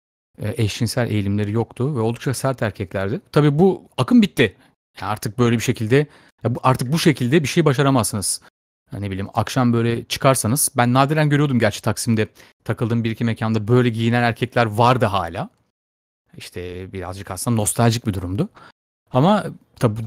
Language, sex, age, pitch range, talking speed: Turkish, male, 30-49, 110-155 Hz, 155 wpm